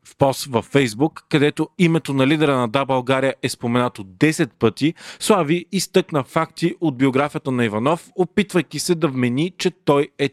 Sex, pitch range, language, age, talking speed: male, 130-160 Hz, Bulgarian, 40-59, 170 wpm